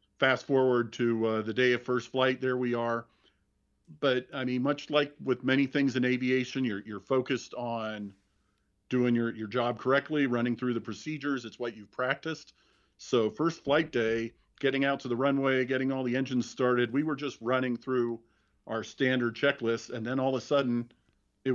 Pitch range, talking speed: 115-135 Hz, 190 wpm